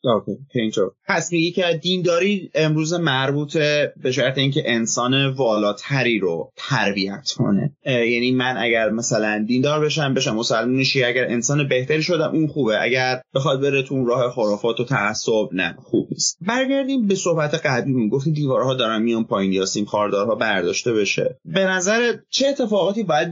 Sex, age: male, 30-49